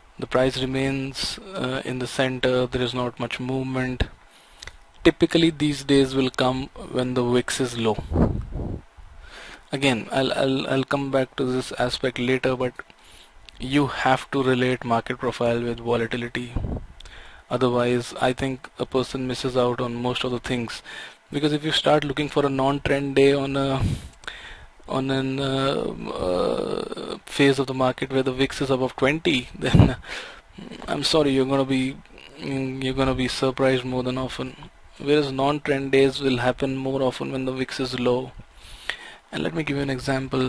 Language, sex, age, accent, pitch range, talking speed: Tamil, male, 20-39, native, 125-140 Hz, 170 wpm